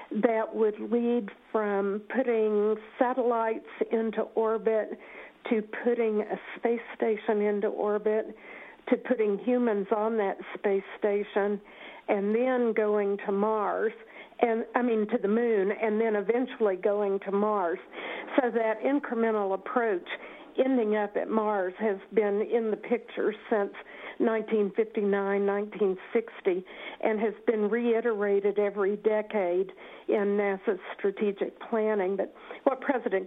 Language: English